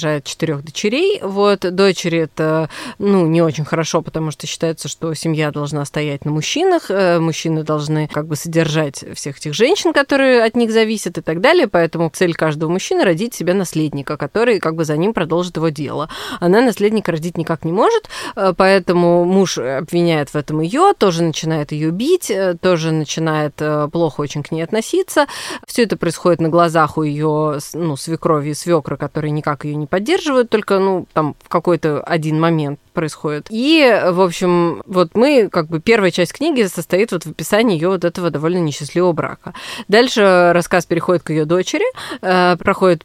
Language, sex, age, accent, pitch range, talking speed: Russian, female, 20-39, native, 155-195 Hz, 170 wpm